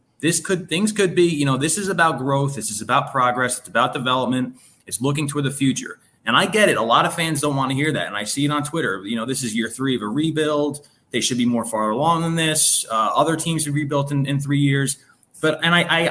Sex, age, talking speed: male, 20-39, 270 wpm